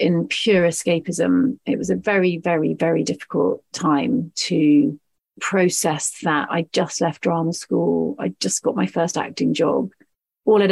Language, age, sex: English, 30-49, female